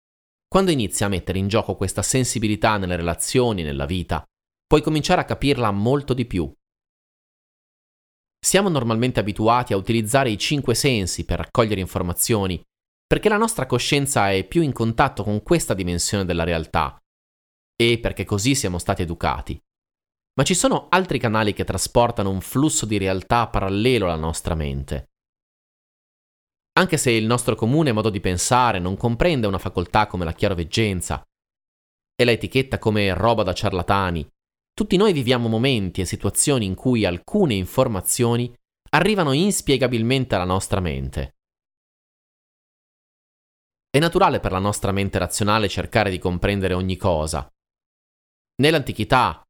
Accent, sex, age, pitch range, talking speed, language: native, male, 30-49, 90-125 Hz, 135 wpm, Italian